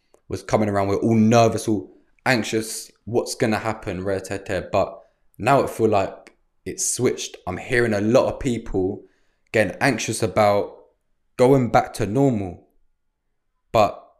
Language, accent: English, British